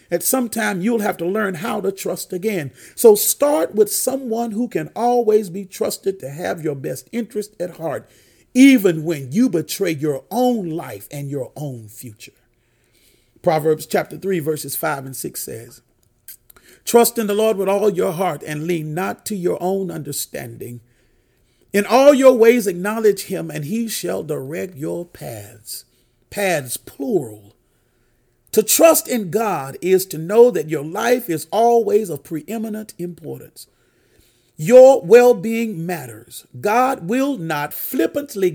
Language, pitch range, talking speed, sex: English, 145-225 Hz, 150 wpm, male